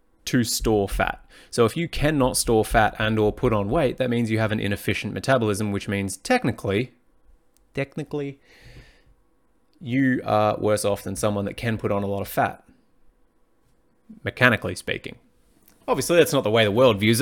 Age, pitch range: 20-39, 105-125 Hz